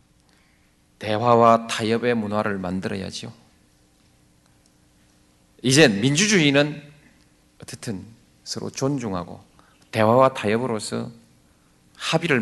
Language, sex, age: Korean, male, 40-59